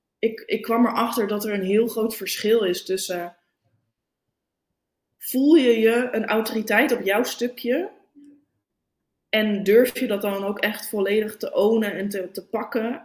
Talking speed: 155 wpm